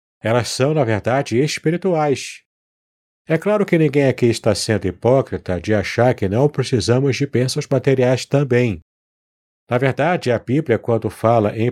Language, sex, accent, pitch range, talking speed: Portuguese, male, Brazilian, 110-145 Hz, 150 wpm